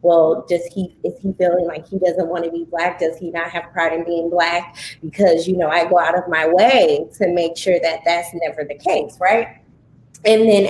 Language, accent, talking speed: English, American, 230 wpm